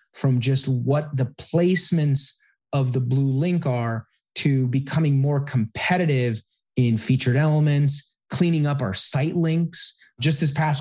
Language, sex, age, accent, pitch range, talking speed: English, male, 30-49, American, 125-145 Hz, 140 wpm